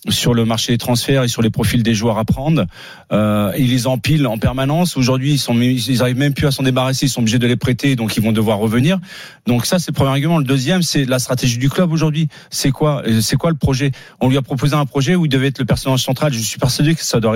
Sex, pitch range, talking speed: male, 130-160 Hz, 275 wpm